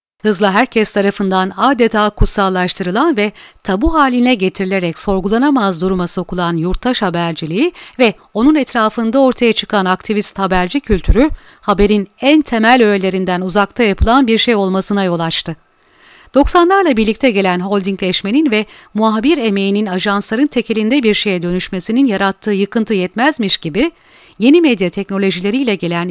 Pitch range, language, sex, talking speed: 190-240 Hz, Turkish, female, 120 wpm